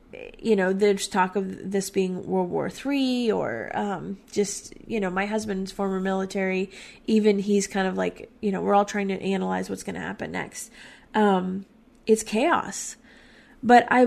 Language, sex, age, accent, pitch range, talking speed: English, female, 30-49, American, 185-220 Hz, 175 wpm